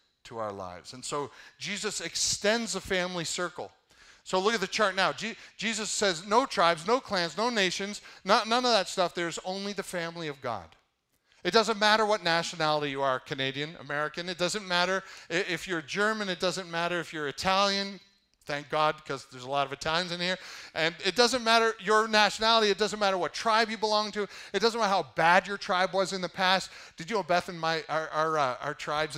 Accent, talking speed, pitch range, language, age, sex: American, 205 wpm, 150-200 Hz, English, 40-59, male